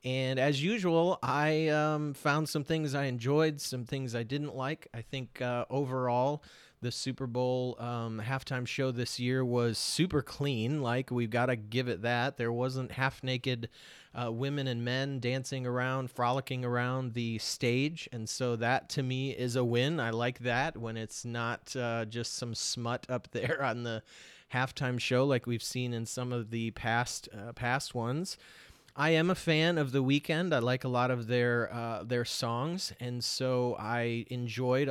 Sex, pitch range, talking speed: male, 120-135 Hz, 175 wpm